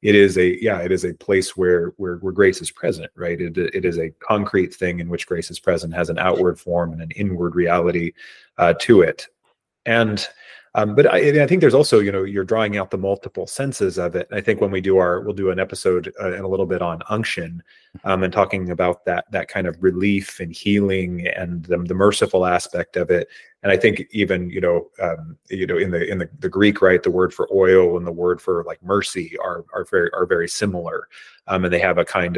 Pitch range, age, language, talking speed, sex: 90-105 Hz, 30-49, English, 235 wpm, male